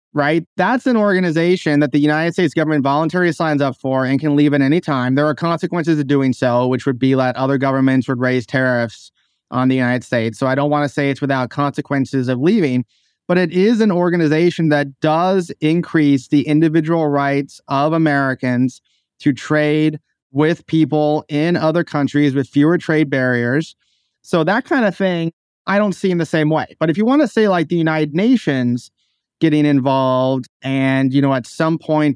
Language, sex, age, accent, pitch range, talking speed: English, male, 30-49, American, 135-160 Hz, 190 wpm